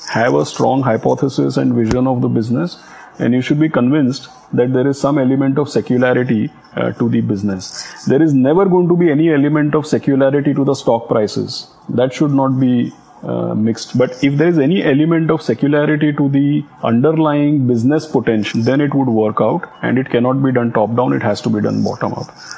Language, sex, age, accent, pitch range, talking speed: English, male, 30-49, Indian, 125-150 Hz, 205 wpm